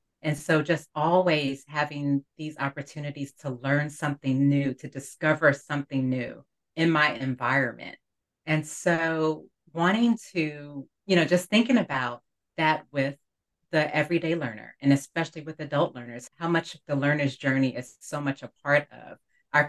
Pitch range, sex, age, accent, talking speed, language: 135-160 Hz, female, 40-59, American, 150 wpm, English